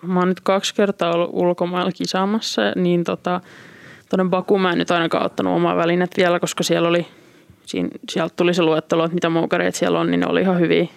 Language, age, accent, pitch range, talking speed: Finnish, 20-39, native, 165-185 Hz, 210 wpm